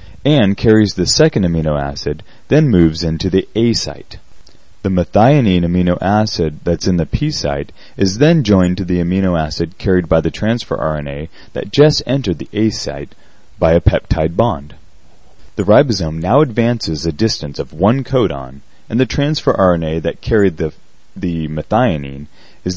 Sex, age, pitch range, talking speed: male, 30-49, 80-110 Hz, 165 wpm